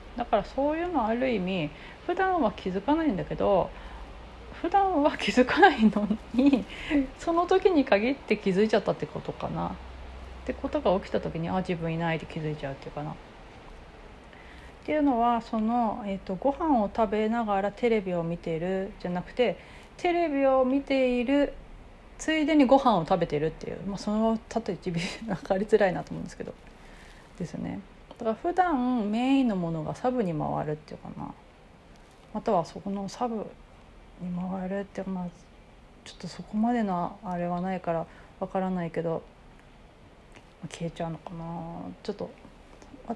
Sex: female